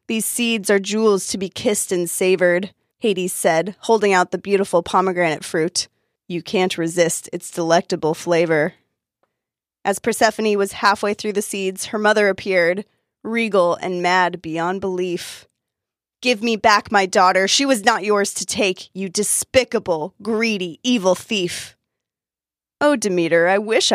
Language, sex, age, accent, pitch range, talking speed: English, female, 20-39, American, 180-225 Hz, 145 wpm